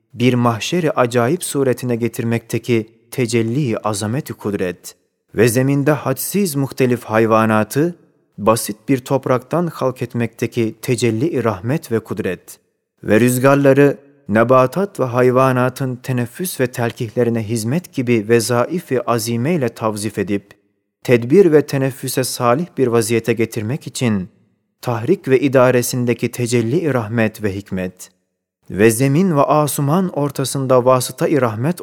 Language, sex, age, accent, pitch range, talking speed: Turkish, male, 30-49, native, 115-135 Hz, 110 wpm